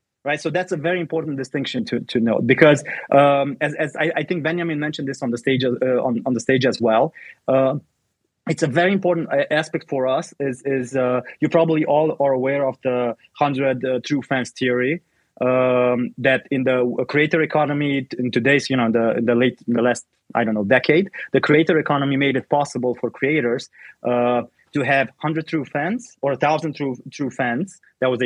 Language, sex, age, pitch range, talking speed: English, male, 20-39, 130-160 Hz, 205 wpm